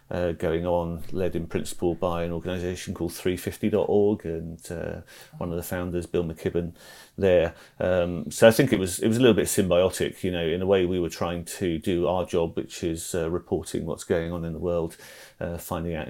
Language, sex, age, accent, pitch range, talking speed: English, male, 30-49, British, 85-90 Hz, 215 wpm